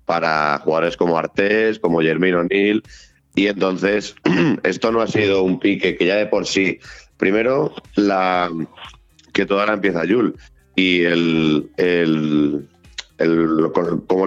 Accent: Spanish